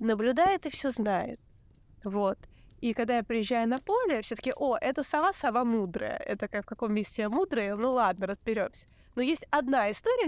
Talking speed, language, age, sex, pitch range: 175 wpm, Russian, 20-39, female, 220-285 Hz